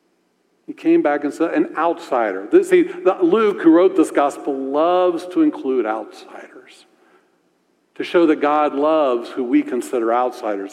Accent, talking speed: American, 145 wpm